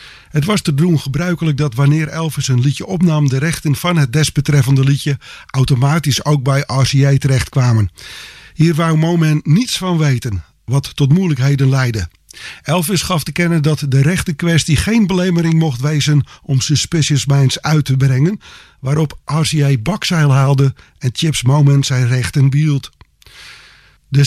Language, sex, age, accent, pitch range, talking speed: English, male, 50-69, Dutch, 135-165 Hz, 150 wpm